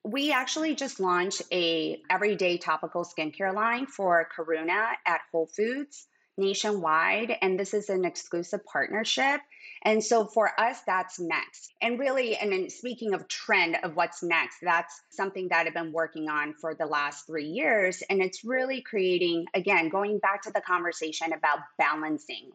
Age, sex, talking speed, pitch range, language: 20-39, female, 160 wpm, 155-190 Hz, English